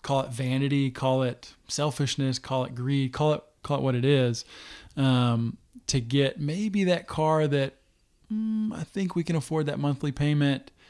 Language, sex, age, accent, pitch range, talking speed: English, male, 20-39, American, 125-145 Hz, 175 wpm